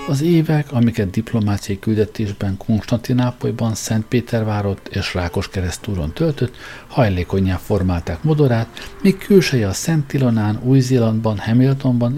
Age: 60-79